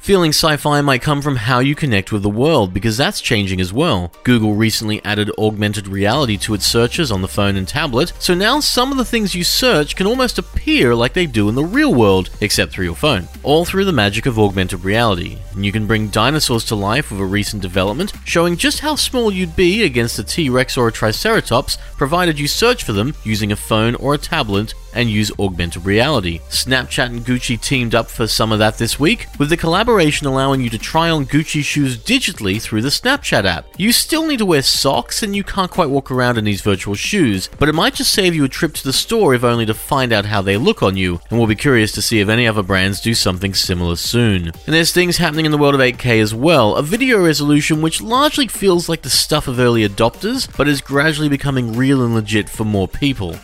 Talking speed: 230 wpm